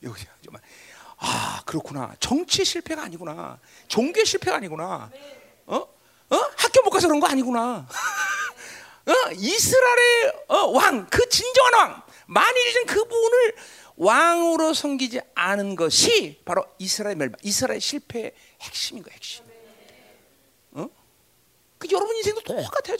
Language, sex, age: Korean, male, 40-59